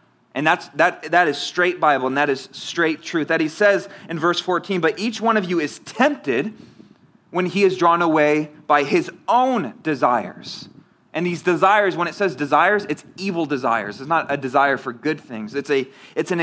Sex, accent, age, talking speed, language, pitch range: male, American, 30-49, 200 wpm, English, 150-190 Hz